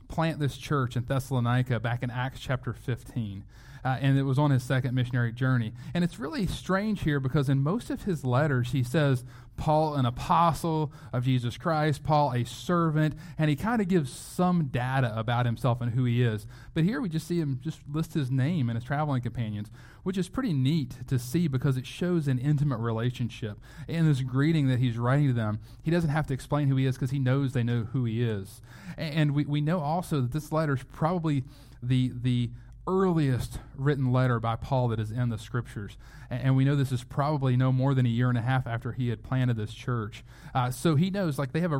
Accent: American